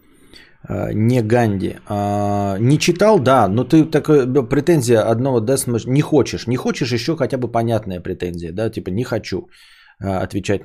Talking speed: 130 wpm